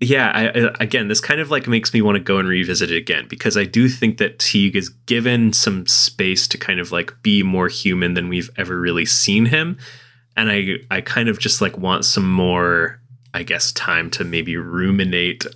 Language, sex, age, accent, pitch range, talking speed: English, male, 20-39, American, 90-120 Hz, 210 wpm